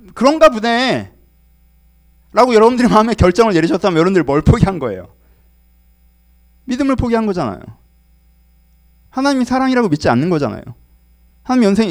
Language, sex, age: Korean, male, 30-49